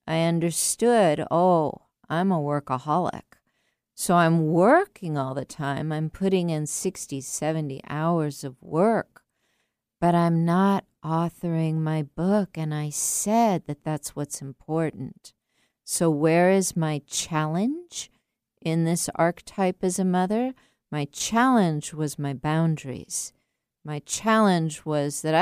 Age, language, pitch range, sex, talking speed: 50-69, English, 150-190 Hz, female, 125 wpm